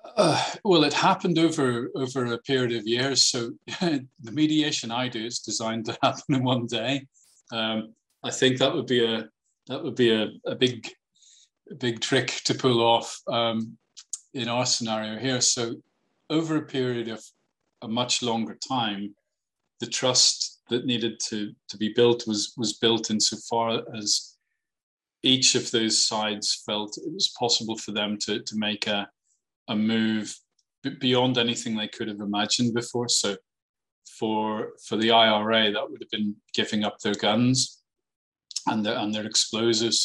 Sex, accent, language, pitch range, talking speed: male, British, English, 110-125 Hz, 165 wpm